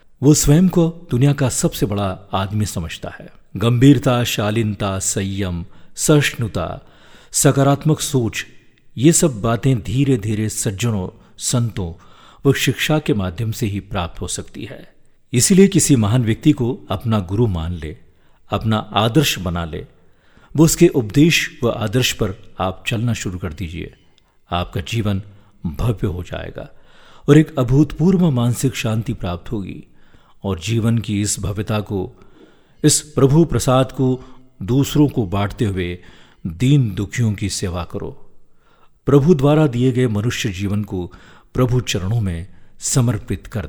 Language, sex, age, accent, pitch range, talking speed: Hindi, male, 50-69, native, 95-135 Hz, 135 wpm